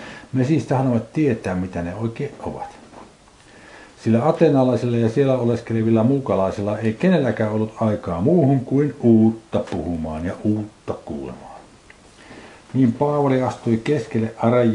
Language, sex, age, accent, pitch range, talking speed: Finnish, male, 60-79, native, 100-130 Hz, 120 wpm